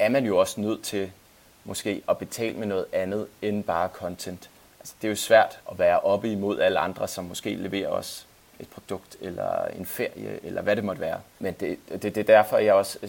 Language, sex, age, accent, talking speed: Danish, male, 30-49, native, 220 wpm